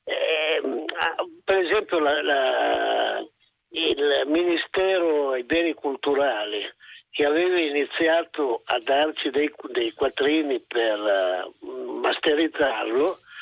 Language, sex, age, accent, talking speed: Italian, male, 50-69, native, 80 wpm